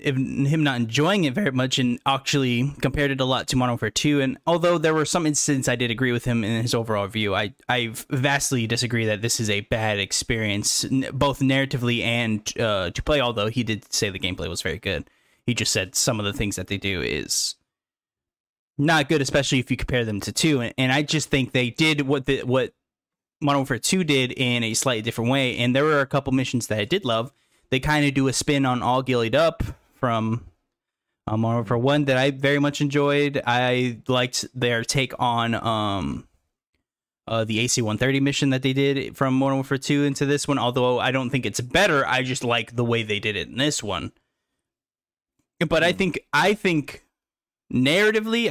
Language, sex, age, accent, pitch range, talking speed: English, male, 10-29, American, 115-145 Hz, 210 wpm